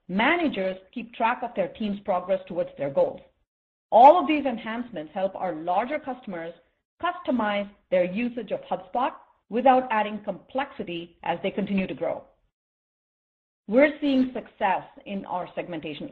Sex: female